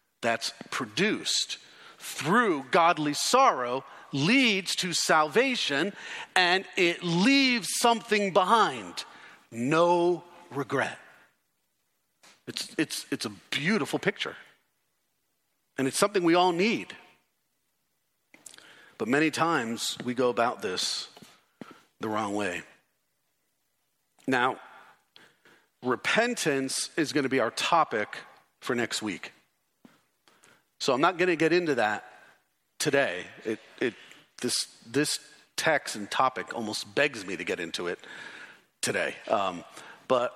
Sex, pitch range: male, 135-185 Hz